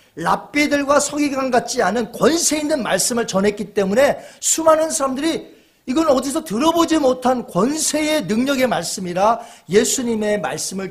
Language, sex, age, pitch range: Korean, male, 40-59, 180-235 Hz